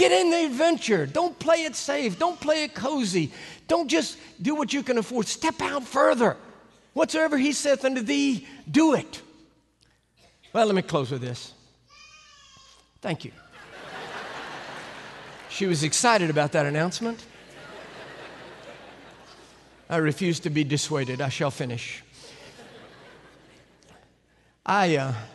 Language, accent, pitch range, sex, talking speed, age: English, American, 135-175 Hz, male, 125 wpm, 50-69